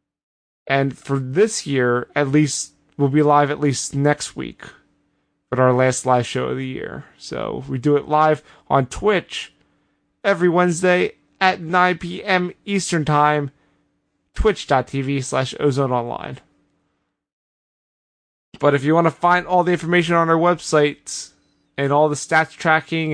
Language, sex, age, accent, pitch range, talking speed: English, male, 20-39, American, 135-170 Hz, 145 wpm